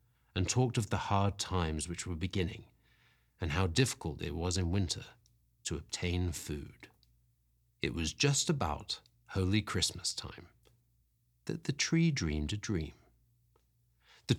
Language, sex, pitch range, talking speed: English, male, 90-135 Hz, 140 wpm